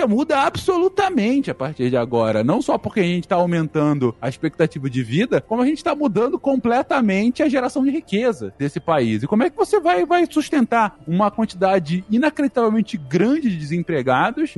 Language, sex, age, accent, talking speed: Portuguese, male, 20-39, Brazilian, 175 wpm